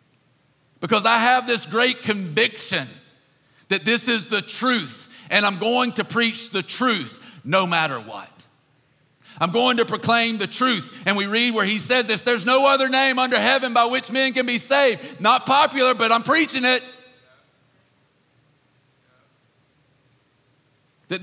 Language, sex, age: English, male, 50-69